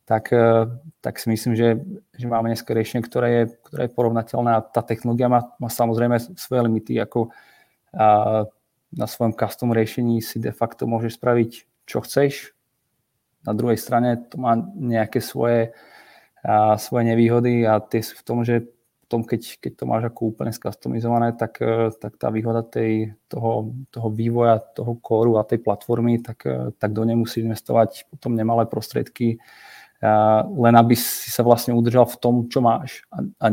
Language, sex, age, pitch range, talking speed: Czech, male, 20-39, 115-120 Hz, 150 wpm